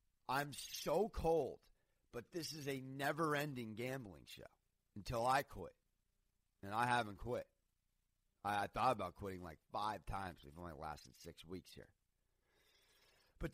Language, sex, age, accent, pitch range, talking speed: English, male, 30-49, American, 95-130 Hz, 140 wpm